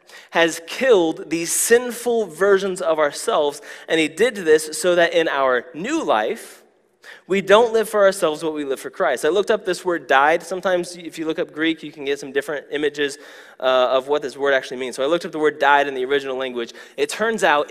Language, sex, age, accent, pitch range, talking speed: English, male, 20-39, American, 150-200 Hz, 225 wpm